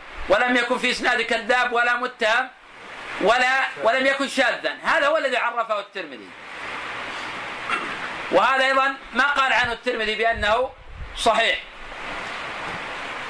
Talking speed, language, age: 110 wpm, Arabic, 40-59